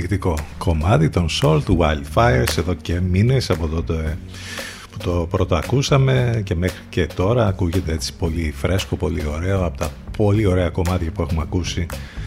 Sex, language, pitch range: male, Greek, 90-110 Hz